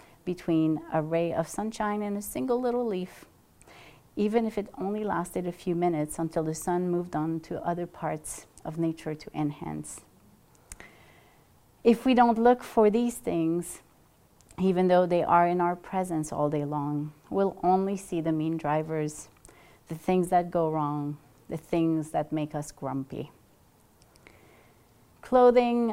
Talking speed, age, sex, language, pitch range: 150 wpm, 30-49, female, English, 150-185 Hz